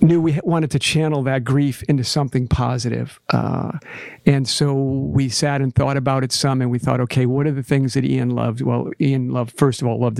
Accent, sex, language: American, male, English